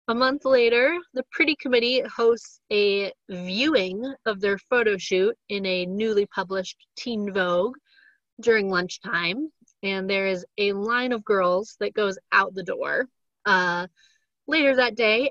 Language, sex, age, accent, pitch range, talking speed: English, female, 30-49, American, 190-250 Hz, 145 wpm